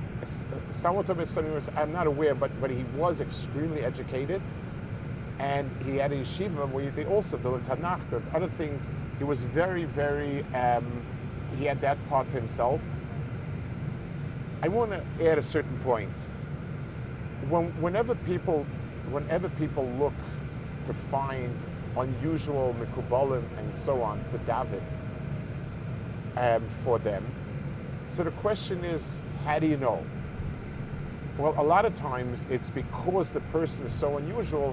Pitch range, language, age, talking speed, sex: 125-150 Hz, English, 50-69, 135 wpm, male